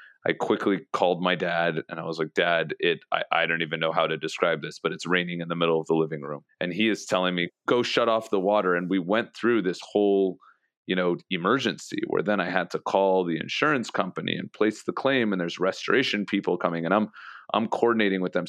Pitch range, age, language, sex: 85-105 Hz, 30-49, English, male